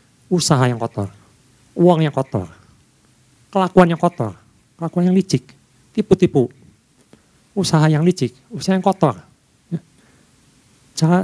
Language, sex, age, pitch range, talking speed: Indonesian, male, 50-69, 125-170 Hz, 105 wpm